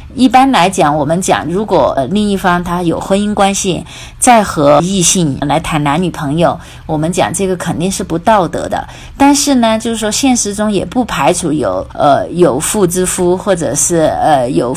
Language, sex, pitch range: Chinese, female, 165-215 Hz